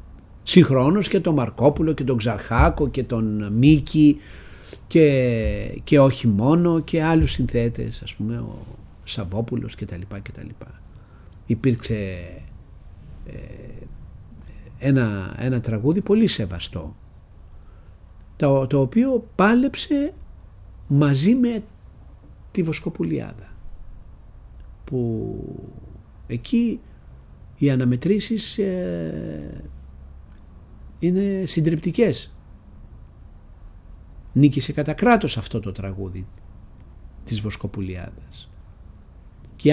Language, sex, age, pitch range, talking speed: Greek, male, 60-79, 95-150 Hz, 80 wpm